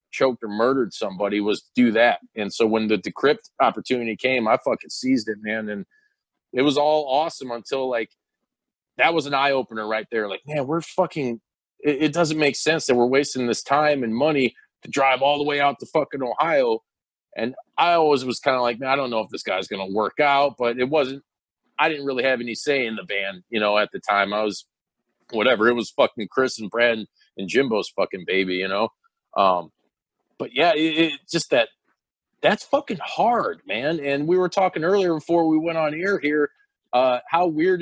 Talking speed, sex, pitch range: 215 wpm, male, 120-155 Hz